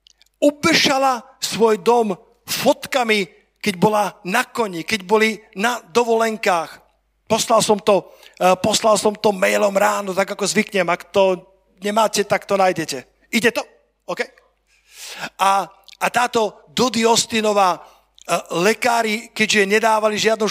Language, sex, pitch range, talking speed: Slovak, male, 195-230 Hz, 115 wpm